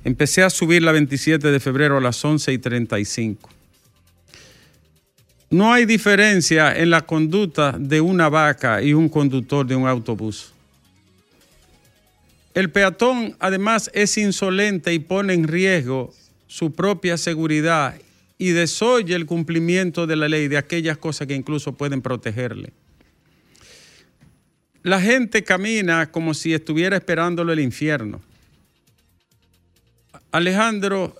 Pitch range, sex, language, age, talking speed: 140-180 Hz, male, Spanish, 50-69, 120 wpm